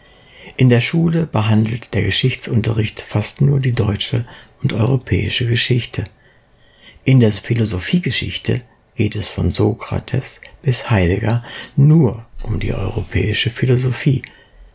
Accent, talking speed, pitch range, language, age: German, 110 wpm, 100-130 Hz, German, 60-79